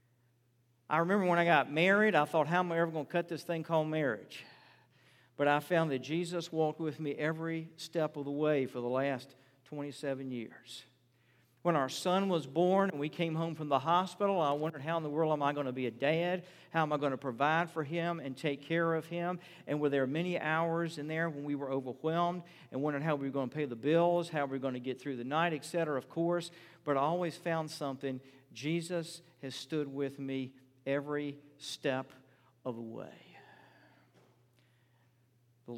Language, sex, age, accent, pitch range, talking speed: English, male, 50-69, American, 125-160 Hz, 210 wpm